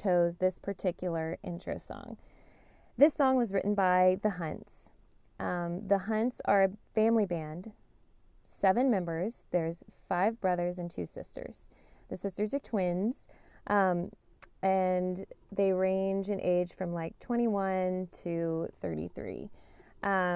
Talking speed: 125 wpm